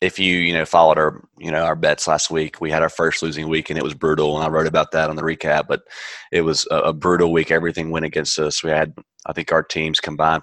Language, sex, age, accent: English, male, 20-39, American